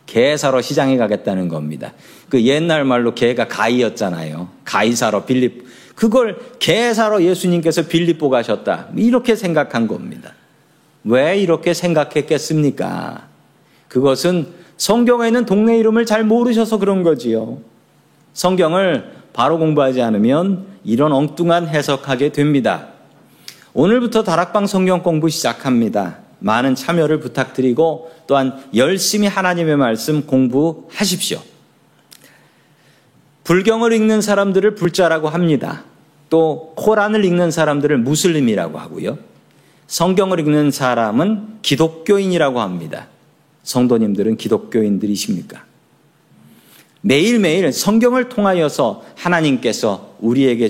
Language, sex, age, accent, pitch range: Korean, male, 40-59, native, 130-190 Hz